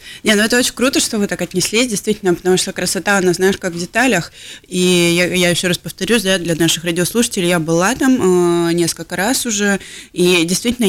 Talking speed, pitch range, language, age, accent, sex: 205 wpm, 160-195 Hz, Russian, 20-39, native, female